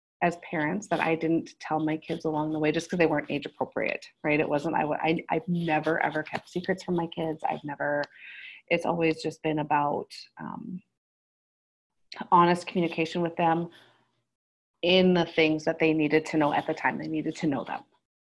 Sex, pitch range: female, 155-185 Hz